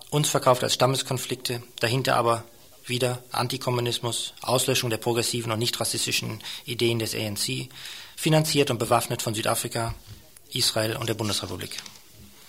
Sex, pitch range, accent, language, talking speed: male, 115-135 Hz, German, German, 125 wpm